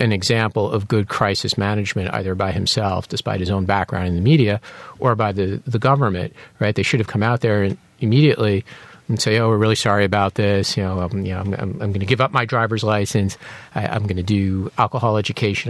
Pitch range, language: 100-125 Hz, English